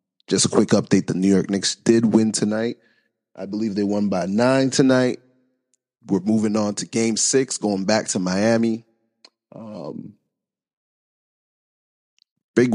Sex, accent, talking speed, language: male, American, 140 wpm, English